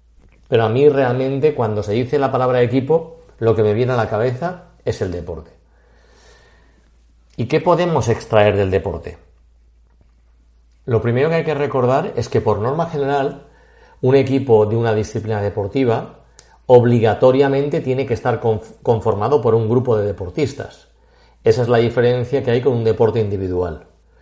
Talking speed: 155 wpm